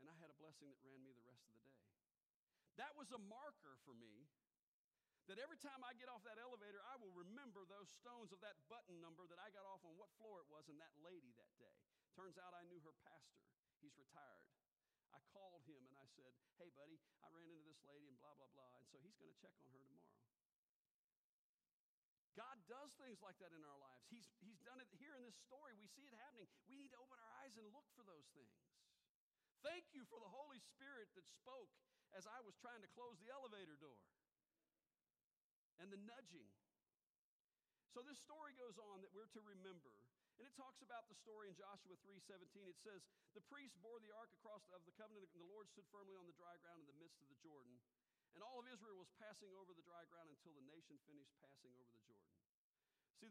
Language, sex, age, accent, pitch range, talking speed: English, male, 40-59, American, 150-230 Hz, 225 wpm